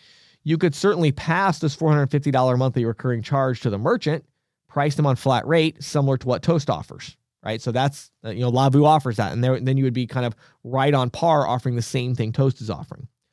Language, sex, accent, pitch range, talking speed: English, male, American, 125-160 Hz, 210 wpm